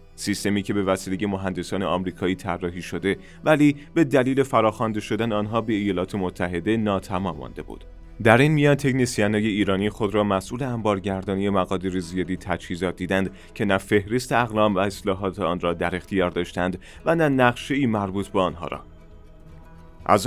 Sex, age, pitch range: male, 30-49, 90-115 Hz